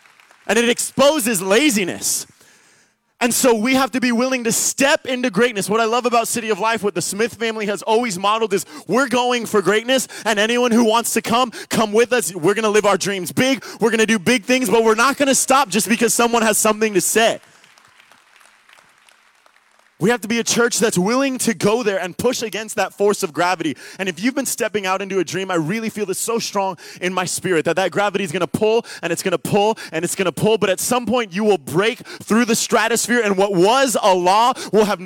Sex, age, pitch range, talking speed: male, 20-39, 200-240 Hz, 240 wpm